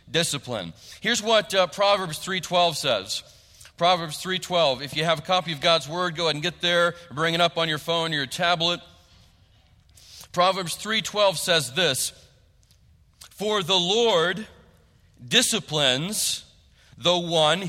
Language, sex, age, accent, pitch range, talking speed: English, male, 40-59, American, 165-215 Hz, 140 wpm